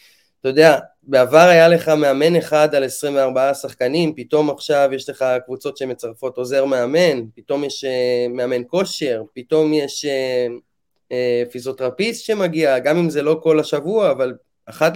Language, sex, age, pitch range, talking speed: Hebrew, male, 20-39, 140-180 Hz, 150 wpm